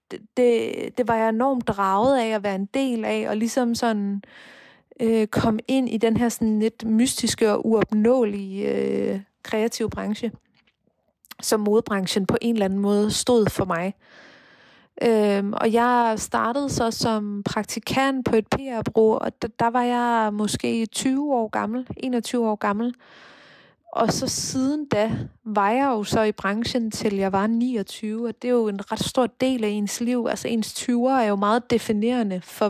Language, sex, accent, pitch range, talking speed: Danish, female, native, 205-240 Hz, 170 wpm